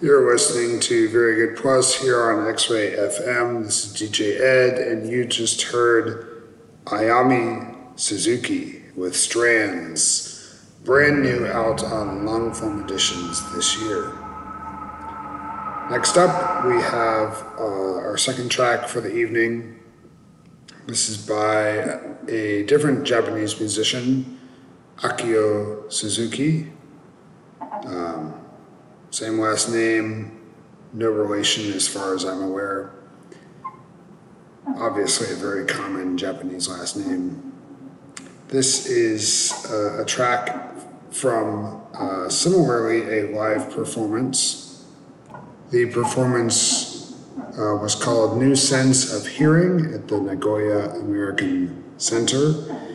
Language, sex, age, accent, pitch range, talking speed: English, male, 40-59, American, 105-135 Hz, 105 wpm